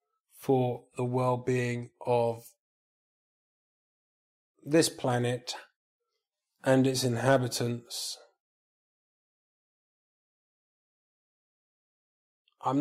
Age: 20-39